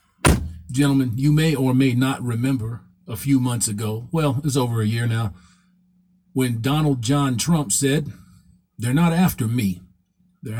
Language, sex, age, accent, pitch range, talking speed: English, male, 50-69, American, 105-145 Hz, 155 wpm